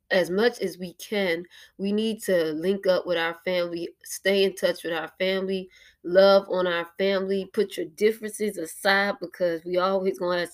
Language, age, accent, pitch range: English, 20-39, American, 175-200 Hz